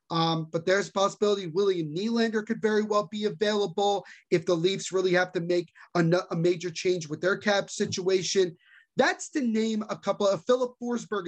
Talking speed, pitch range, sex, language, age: 190 wpm, 170-220 Hz, male, English, 30-49